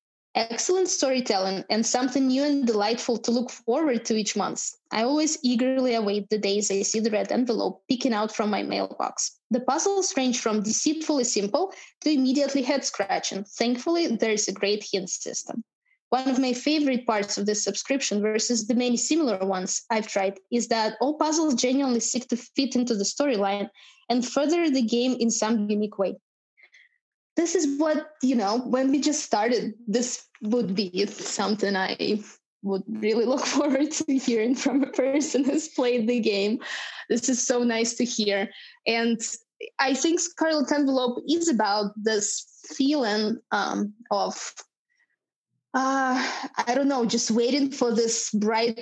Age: 20-39